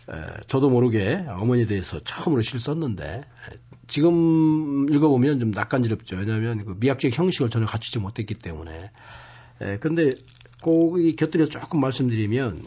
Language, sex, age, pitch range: Korean, male, 40-59, 110-145 Hz